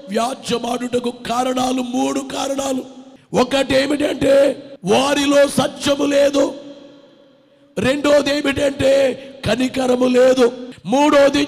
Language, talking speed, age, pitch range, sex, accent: Telugu, 75 wpm, 50-69, 250-285 Hz, male, native